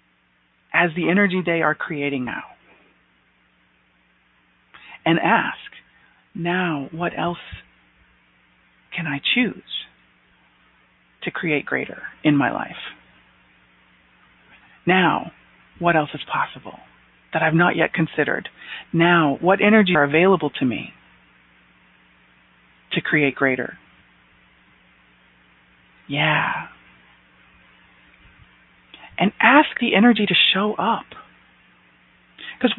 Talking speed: 90 wpm